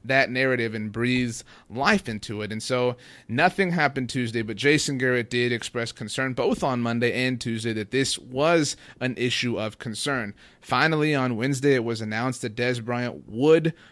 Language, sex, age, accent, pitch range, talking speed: English, male, 30-49, American, 120-140 Hz, 175 wpm